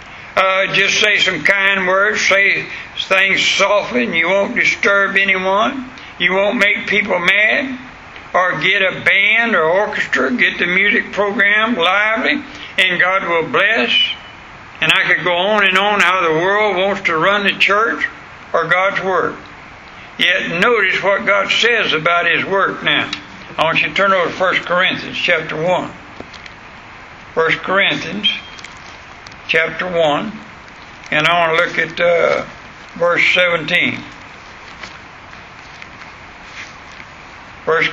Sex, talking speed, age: male, 135 wpm, 60-79